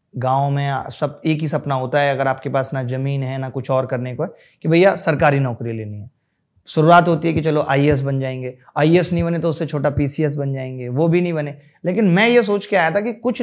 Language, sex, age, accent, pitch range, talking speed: Hindi, male, 30-49, native, 135-180 Hz, 250 wpm